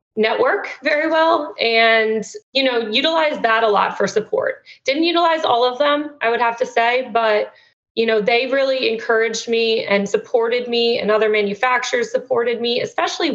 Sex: female